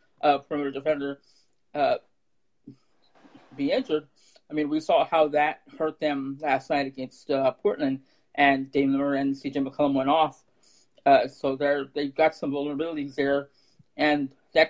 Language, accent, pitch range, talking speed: English, American, 140-165 Hz, 145 wpm